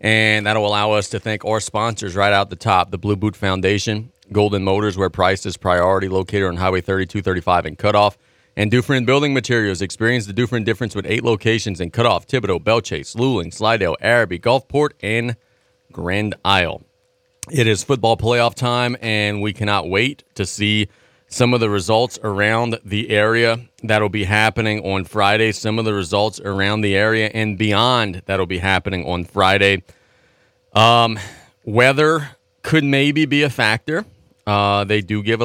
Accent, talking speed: American, 170 wpm